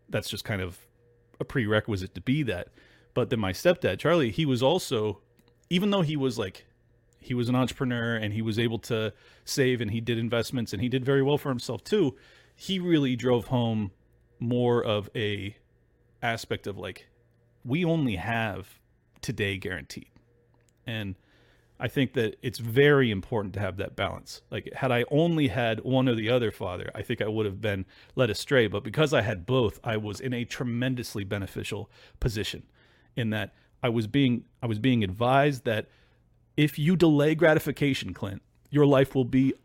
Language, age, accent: English, 30-49, American